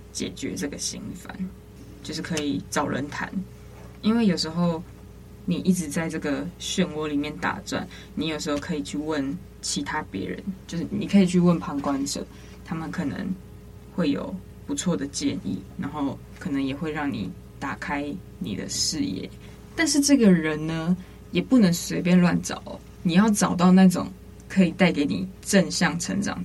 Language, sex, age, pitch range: Chinese, female, 20-39, 145-185 Hz